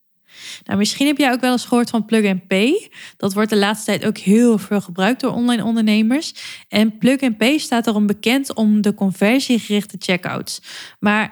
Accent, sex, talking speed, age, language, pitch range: Dutch, female, 180 wpm, 20-39, Dutch, 195-240 Hz